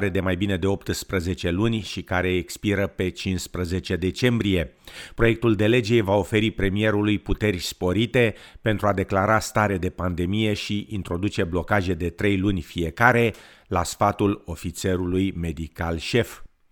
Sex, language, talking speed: male, Romanian, 135 wpm